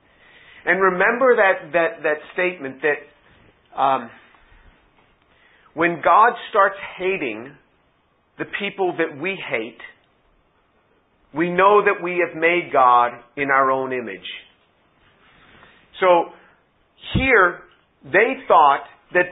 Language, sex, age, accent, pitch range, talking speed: English, male, 50-69, American, 140-180 Hz, 105 wpm